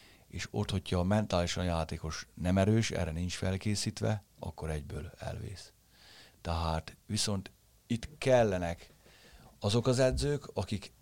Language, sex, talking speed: Hungarian, male, 120 wpm